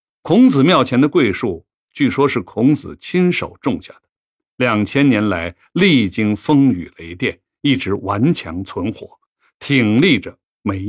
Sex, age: male, 60-79